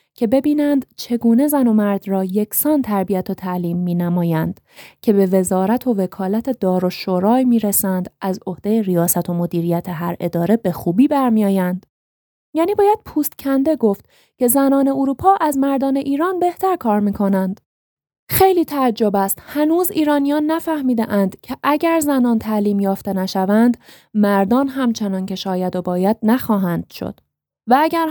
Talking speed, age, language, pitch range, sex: 145 wpm, 20-39, Persian, 195-275 Hz, female